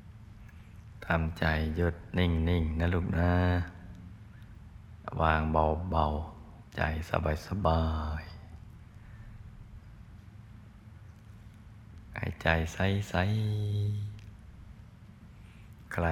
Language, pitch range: Thai, 85-105 Hz